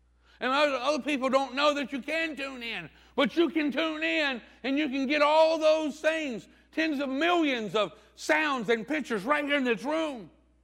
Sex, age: male, 50-69